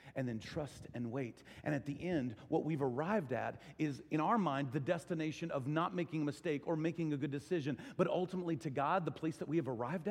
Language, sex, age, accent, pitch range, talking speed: English, male, 40-59, American, 145-225 Hz, 230 wpm